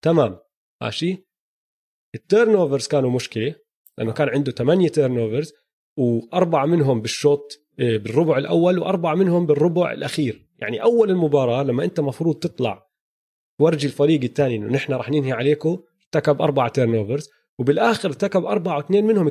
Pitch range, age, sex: 125-180 Hz, 30-49, male